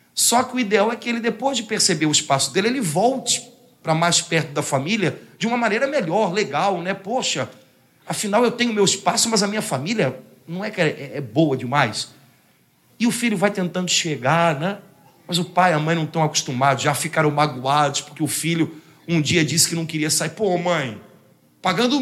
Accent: Brazilian